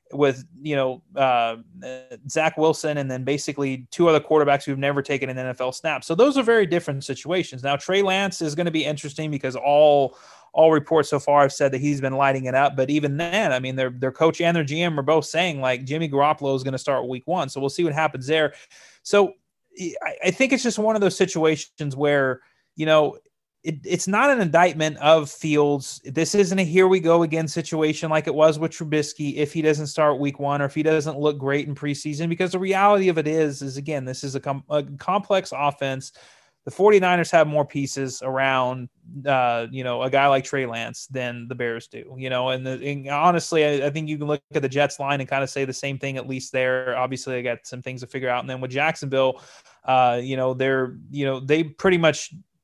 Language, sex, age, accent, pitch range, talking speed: English, male, 30-49, American, 135-160 Hz, 230 wpm